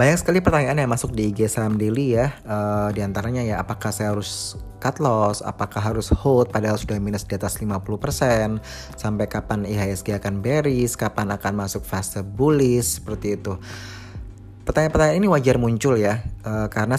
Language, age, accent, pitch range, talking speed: Indonesian, 20-39, native, 100-120 Hz, 160 wpm